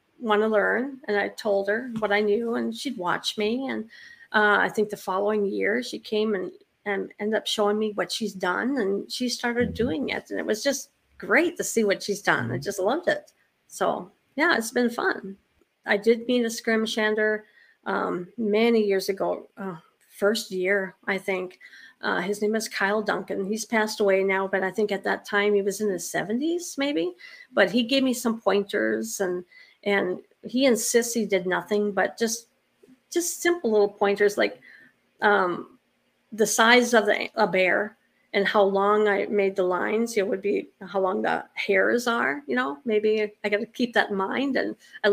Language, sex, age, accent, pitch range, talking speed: English, female, 40-59, American, 200-245 Hz, 195 wpm